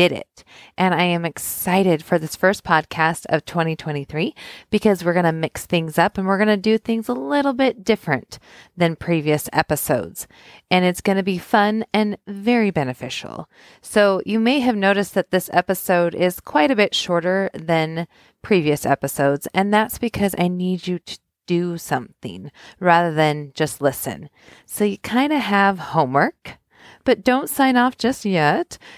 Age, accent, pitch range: 30-49, American, 160-205 Hz